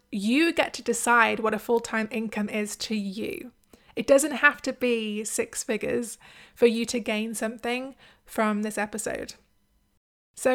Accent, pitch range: British, 220-255 Hz